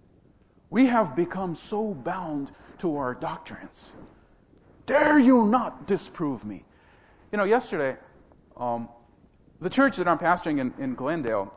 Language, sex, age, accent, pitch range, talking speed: English, male, 40-59, American, 125-215 Hz, 130 wpm